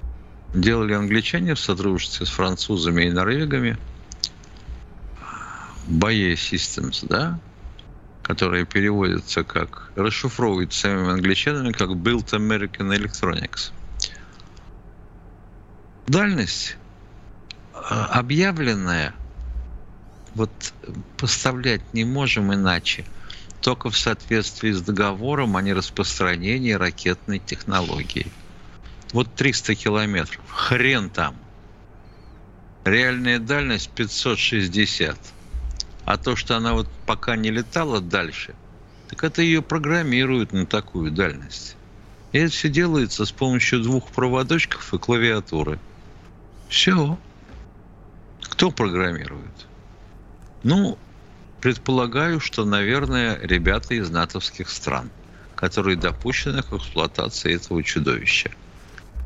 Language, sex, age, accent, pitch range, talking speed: Russian, male, 50-69, native, 90-115 Hz, 90 wpm